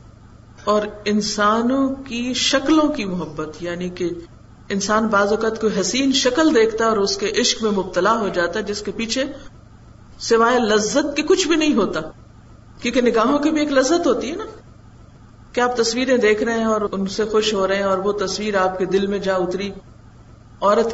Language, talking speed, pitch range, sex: Urdu, 190 wpm, 175-235 Hz, female